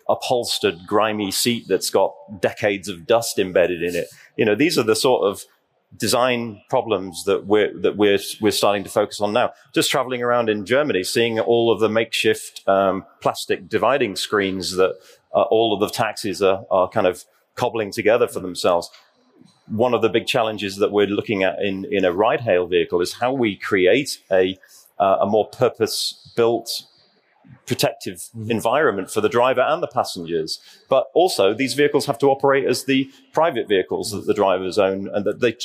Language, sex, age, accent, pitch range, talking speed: English, male, 30-49, British, 100-135 Hz, 185 wpm